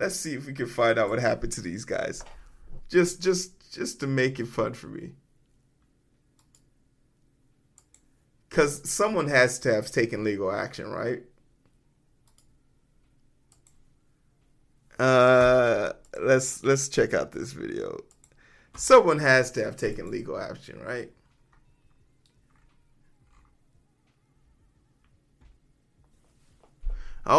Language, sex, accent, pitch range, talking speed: English, male, American, 125-140 Hz, 100 wpm